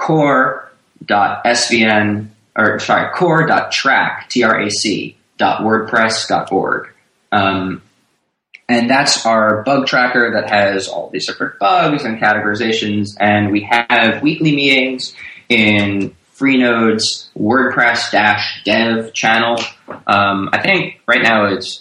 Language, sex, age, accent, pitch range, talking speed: English, male, 20-39, American, 100-125 Hz, 105 wpm